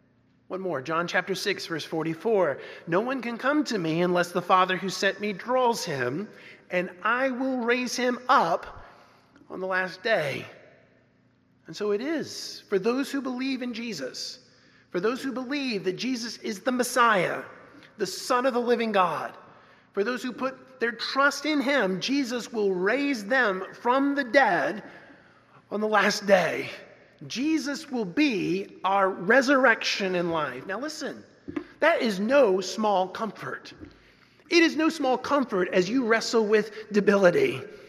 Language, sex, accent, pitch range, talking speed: English, male, American, 195-265 Hz, 155 wpm